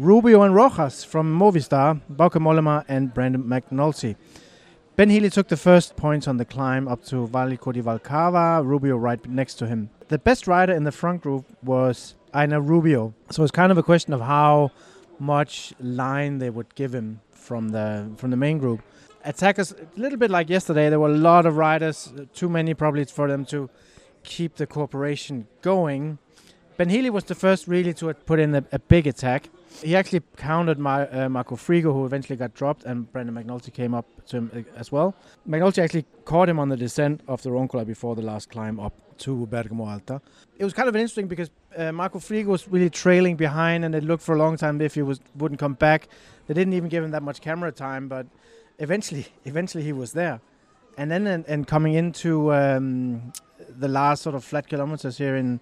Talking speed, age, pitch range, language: 205 wpm, 30-49, 130-170 Hz, English